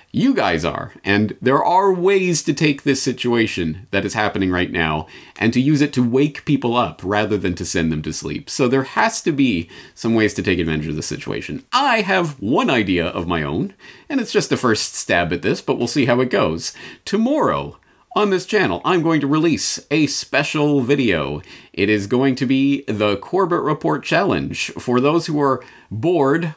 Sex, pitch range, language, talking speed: male, 105-175 Hz, English, 205 wpm